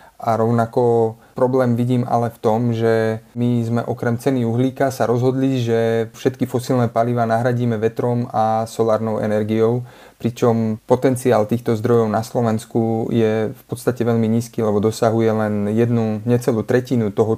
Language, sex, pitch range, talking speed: Slovak, male, 115-125 Hz, 145 wpm